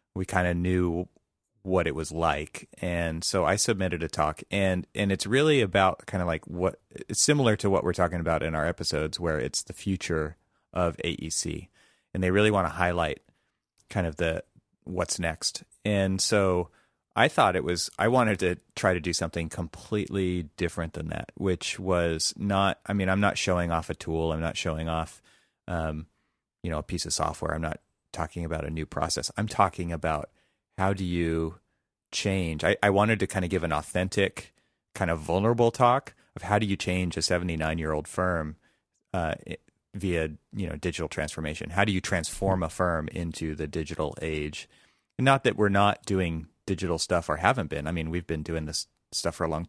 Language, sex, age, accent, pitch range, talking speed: English, male, 30-49, American, 80-95 Hz, 195 wpm